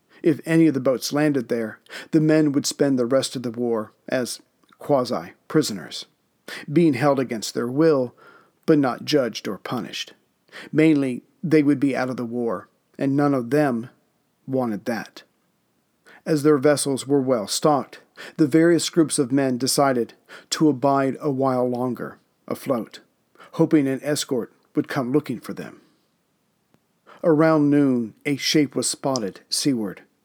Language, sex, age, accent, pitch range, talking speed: English, male, 50-69, American, 130-155 Hz, 150 wpm